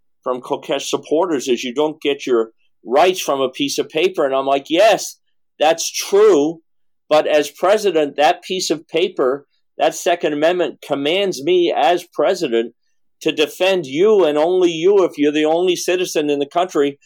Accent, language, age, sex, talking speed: American, English, 50-69, male, 170 wpm